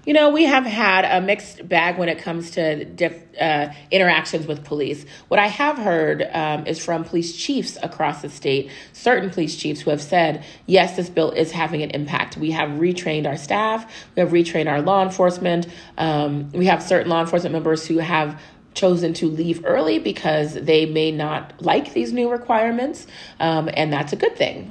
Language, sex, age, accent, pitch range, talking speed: English, female, 30-49, American, 160-190 Hz, 190 wpm